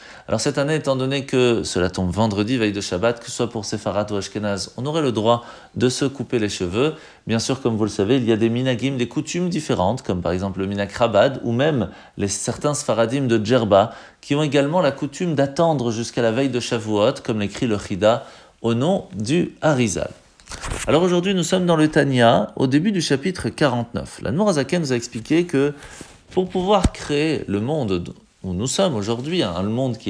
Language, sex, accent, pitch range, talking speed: French, male, French, 110-150 Hz, 205 wpm